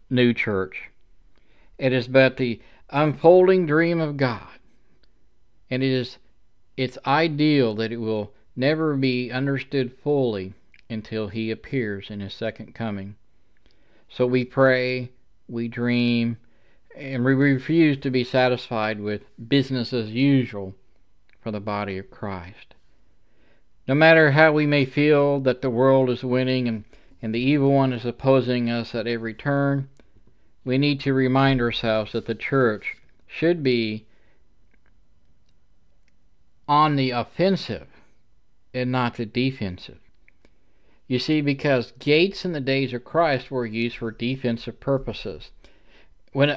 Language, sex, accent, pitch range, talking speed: English, male, American, 115-140 Hz, 135 wpm